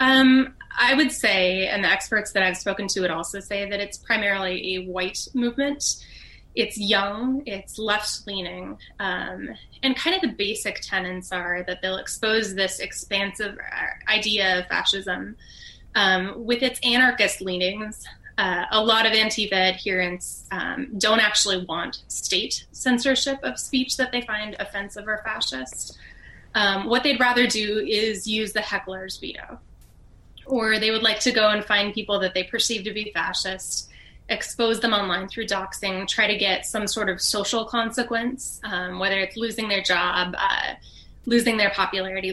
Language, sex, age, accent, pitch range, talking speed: English, female, 20-39, American, 190-235 Hz, 160 wpm